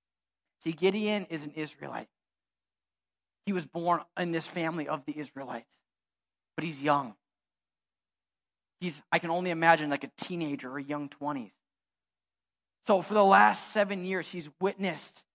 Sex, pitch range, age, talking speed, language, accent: male, 150-210 Hz, 30-49, 145 wpm, English, American